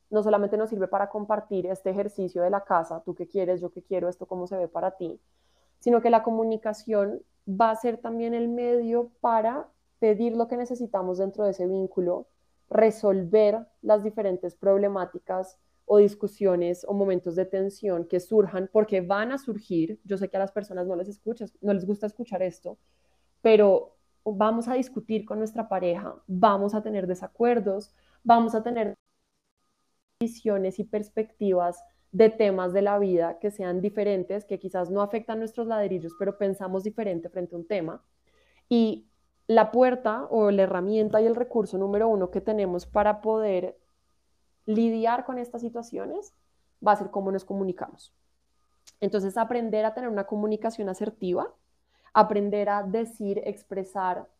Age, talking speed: 20-39, 160 wpm